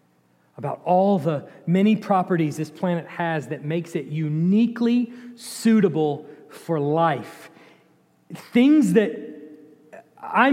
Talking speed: 105 wpm